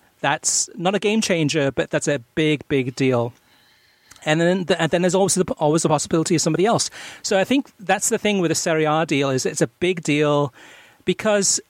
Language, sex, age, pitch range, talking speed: English, male, 40-59, 140-180 Hz, 200 wpm